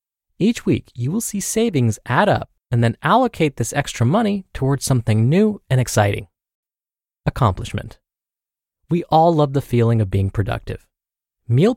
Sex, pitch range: male, 120-195 Hz